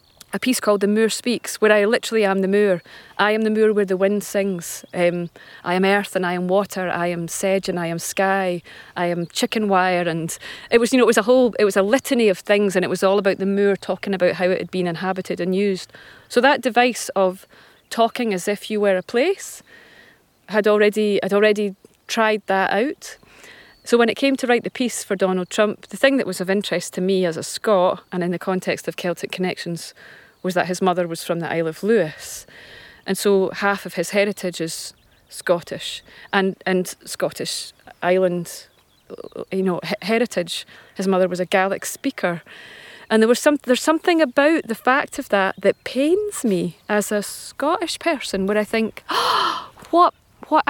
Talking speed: 200 wpm